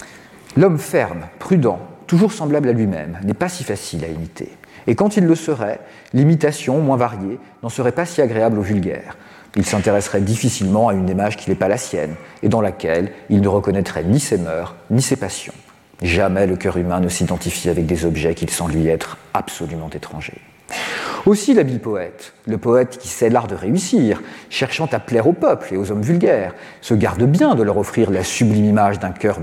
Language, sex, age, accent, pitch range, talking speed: French, male, 40-59, French, 95-140 Hz, 195 wpm